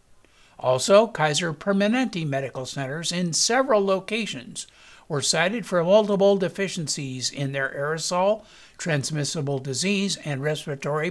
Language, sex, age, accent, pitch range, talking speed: English, male, 60-79, American, 140-195 Hz, 110 wpm